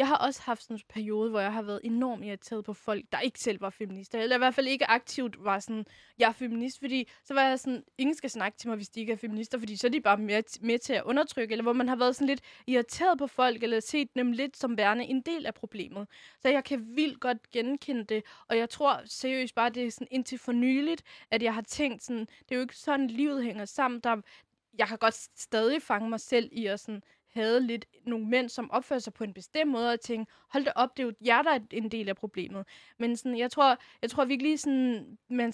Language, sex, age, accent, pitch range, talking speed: Danish, female, 20-39, native, 220-265 Hz, 255 wpm